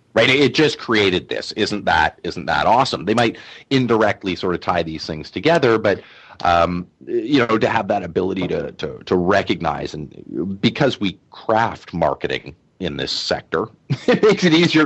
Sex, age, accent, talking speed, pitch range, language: male, 30-49, American, 175 wpm, 90-120 Hz, English